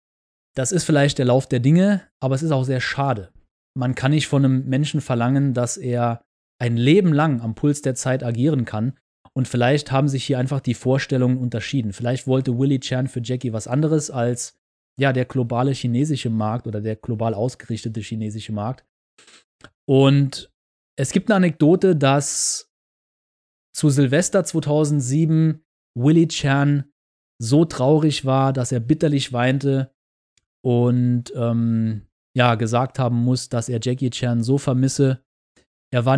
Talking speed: 150 wpm